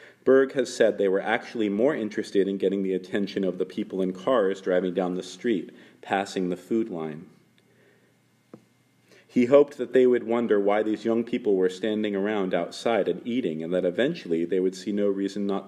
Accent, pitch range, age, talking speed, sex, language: American, 90-115 Hz, 40-59, 190 wpm, male, English